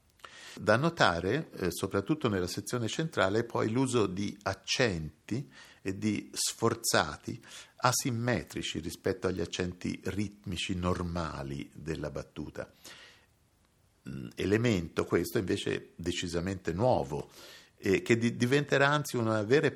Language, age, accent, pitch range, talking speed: Italian, 50-69, native, 85-115 Hz, 100 wpm